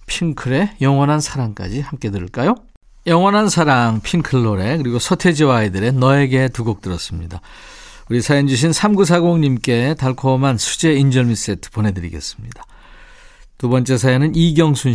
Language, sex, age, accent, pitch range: Korean, male, 50-69, native, 120-165 Hz